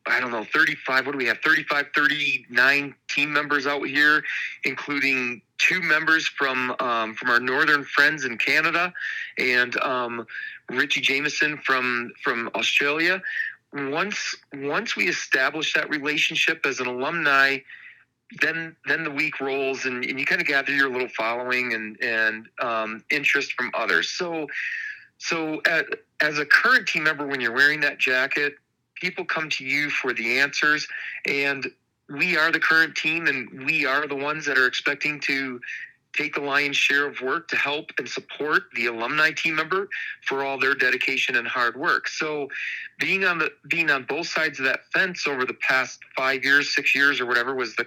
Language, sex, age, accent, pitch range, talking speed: English, male, 30-49, American, 130-155 Hz, 175 wpm